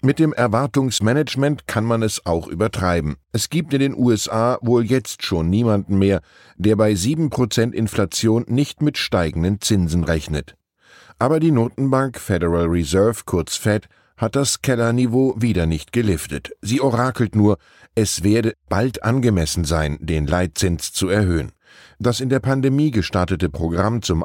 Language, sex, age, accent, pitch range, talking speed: German, male, 10-29, German, 95-125 Hz, 145 wpm